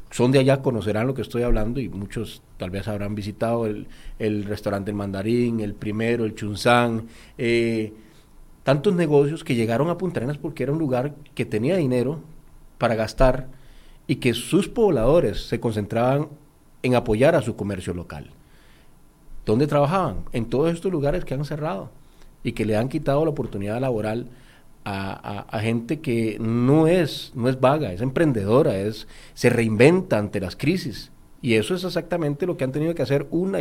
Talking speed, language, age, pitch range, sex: 170 wpm, Spanish, 40-59, 110-145 Hz, male